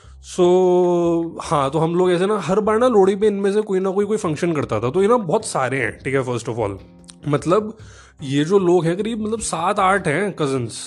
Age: 20-39